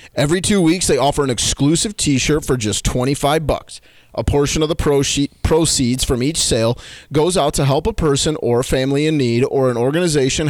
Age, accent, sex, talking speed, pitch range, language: 30-49, American, male, 190 wpm, 125-160 Hz, English